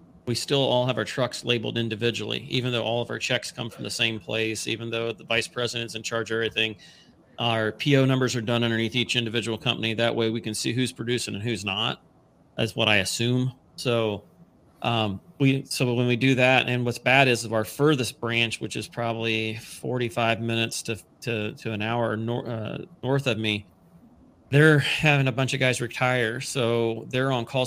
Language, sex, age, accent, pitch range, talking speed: English, male, 30-49, American, 110-125 Hz, 200 wpm